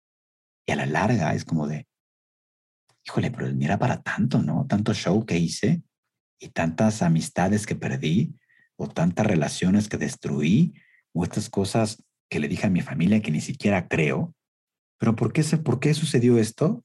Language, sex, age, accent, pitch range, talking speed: Spanish, male, 50-69, Mexican, 90-125 Hz, 165 wpm